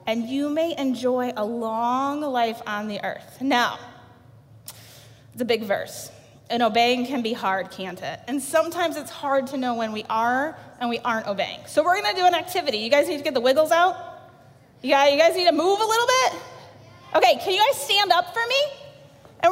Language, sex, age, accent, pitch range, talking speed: English, female, 20-39, American, 260-405 Hz, 210 wpm